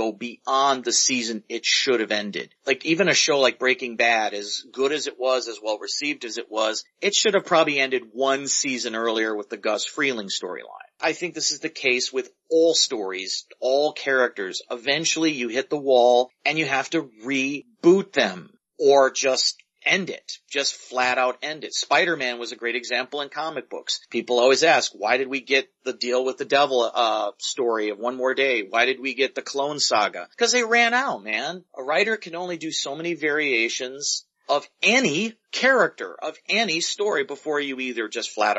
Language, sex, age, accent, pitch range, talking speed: English, male, 40-59, American, 125-180 Hz, 195 wpm